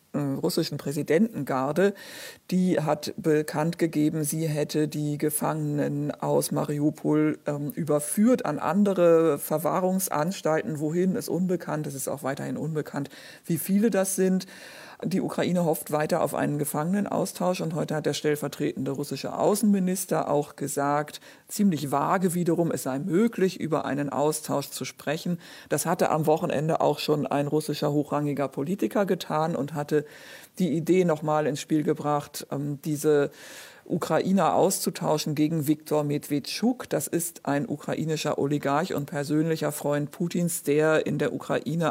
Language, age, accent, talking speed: German, 50-69, German, 135 wpm